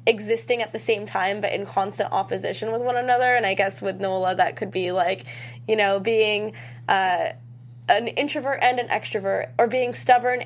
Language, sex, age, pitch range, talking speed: English, female, 10-29, 185-245 Hz, 190 wpm